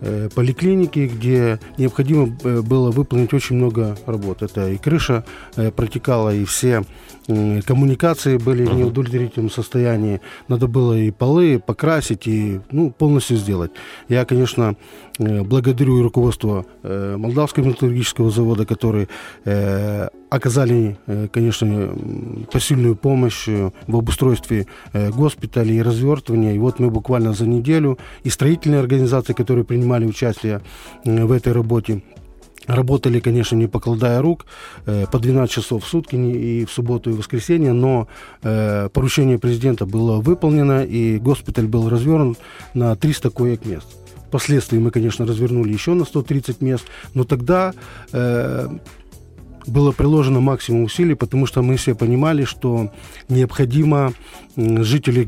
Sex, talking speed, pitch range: male, 120 wpm, 110-130 Hz